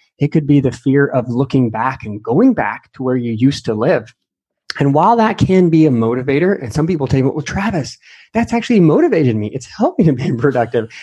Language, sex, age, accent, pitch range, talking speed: English, male, 30-49, American, 120-150 Hz, 225 wpm